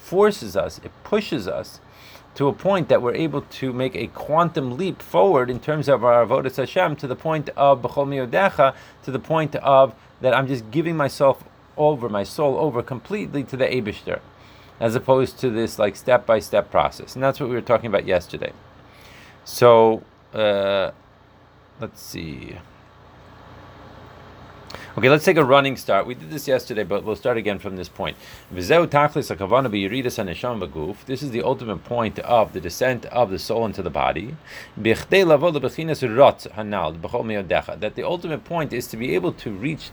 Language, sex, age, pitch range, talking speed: English, male, 30-49, 110-145 Hz, 155 wpm